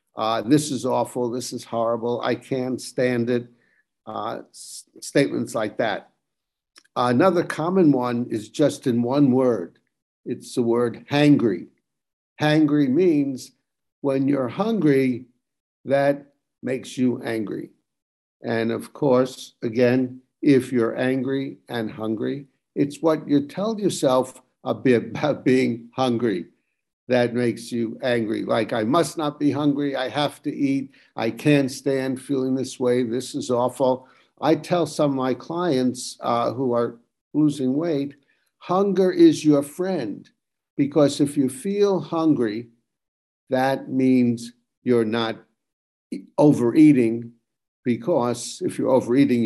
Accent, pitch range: American, 120-145 Hz